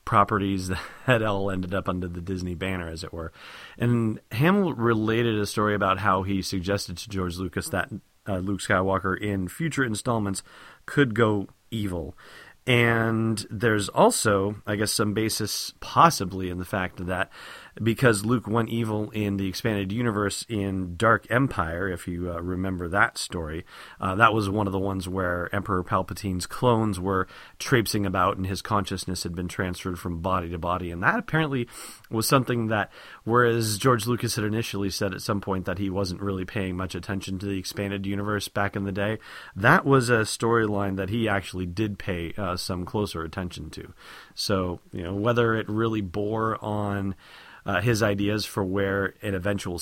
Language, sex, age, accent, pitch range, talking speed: English, male, 40-59, American, 95-115 Hz, 175 wpm